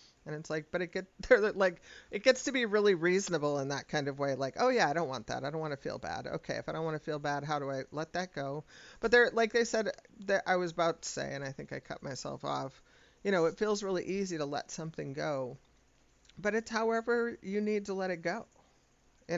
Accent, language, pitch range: American, English, 145-185 Hz